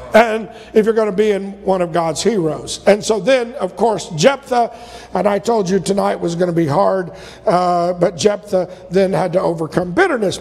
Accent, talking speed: American, 195 wpm